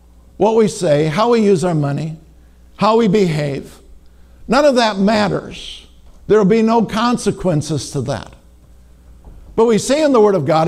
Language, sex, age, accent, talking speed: English, male, 60-79, American, 165 wpm